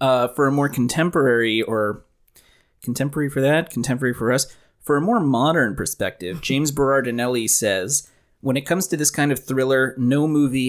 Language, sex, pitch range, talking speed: English, male, 115-135 Hz, 170 wpm